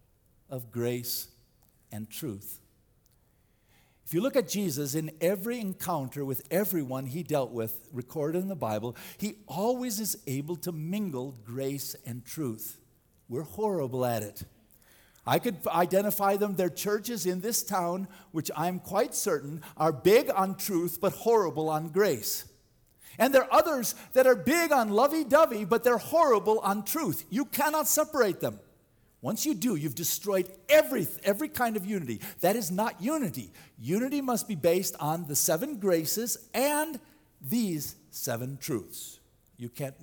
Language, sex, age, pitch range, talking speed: English, male, 50-69, 125-210 Hz, 155 wpm